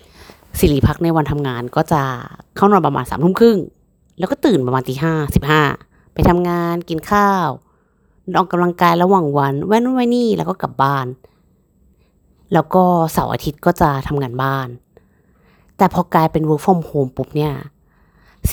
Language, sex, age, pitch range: Thai, female, 30-49, 140-190 Hz